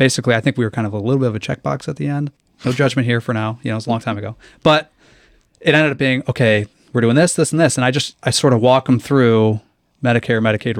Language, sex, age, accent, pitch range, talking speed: English, male, 30-49, American, 115-150 Hz, 290 wpm